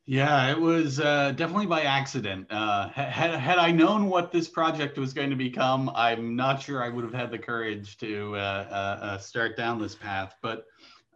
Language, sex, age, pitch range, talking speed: English, male, 40-59, 105-140 Hz, 195 wpm